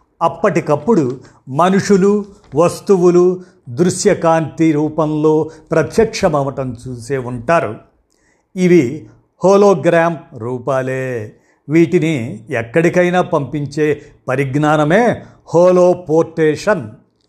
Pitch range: 135-175 Hz